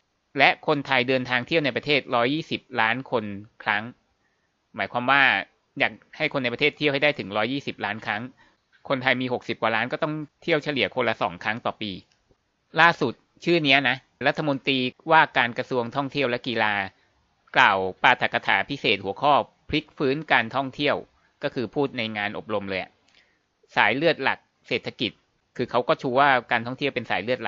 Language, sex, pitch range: Thai, male, 110-140 Hz